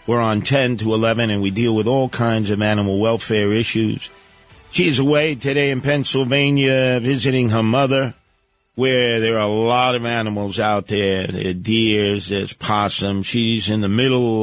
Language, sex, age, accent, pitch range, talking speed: English, male, 50-69, American, 105-130 Hz, 170 wpm